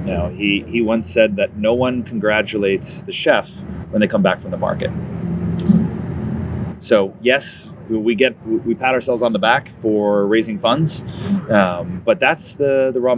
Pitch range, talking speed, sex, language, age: 100-125 Hz, 170 wpm, male, English, 30-49